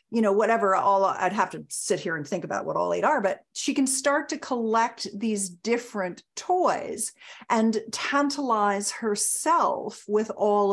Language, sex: English, female